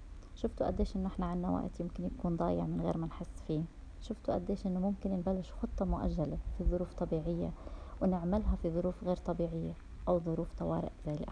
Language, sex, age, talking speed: Arabic, female, 20-39, 180 wpm